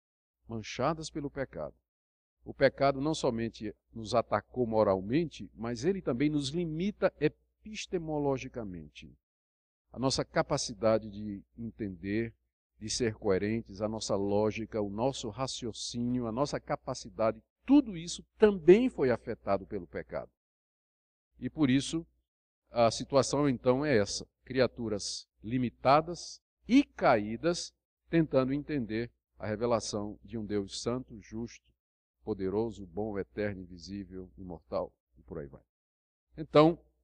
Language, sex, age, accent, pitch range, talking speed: Portuguese, male, 50-69, Brazilian, 95-140 Hz, 115 wpm